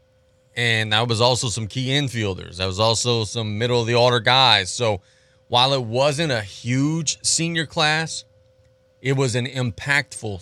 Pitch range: 100-120 Hz